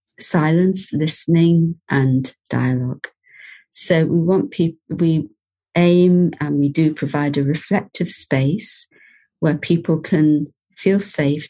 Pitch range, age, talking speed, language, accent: 145-175 Hz, 50-69, 115 wpm, English, British